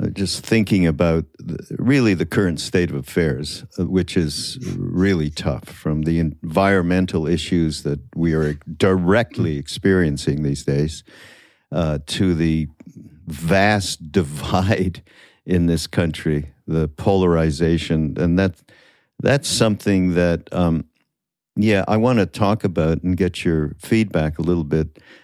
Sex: male